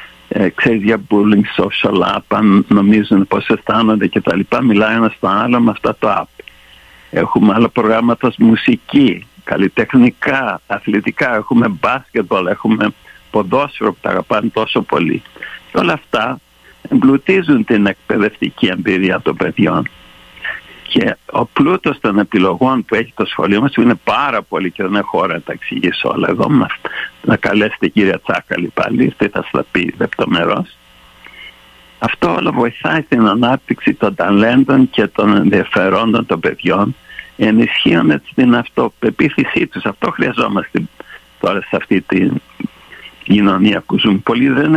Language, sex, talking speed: Greek, male, 145 wpm